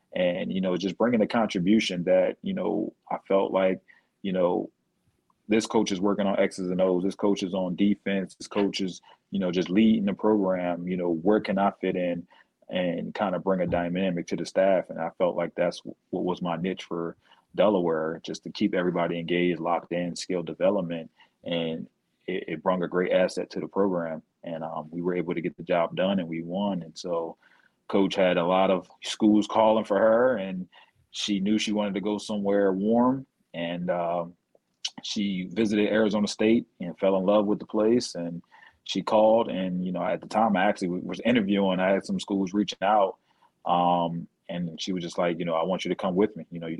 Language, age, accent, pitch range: English, 30-49, American, 85-105 Hz